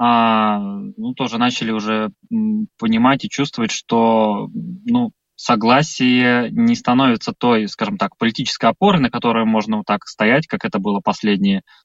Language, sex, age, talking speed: Russian, male, 20-39, 135 wpm